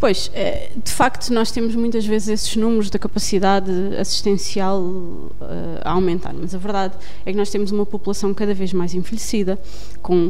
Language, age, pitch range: Portuguese, 20-39, 185-225 Hz